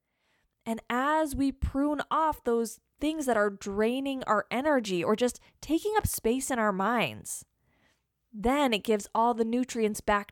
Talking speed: 155 wpm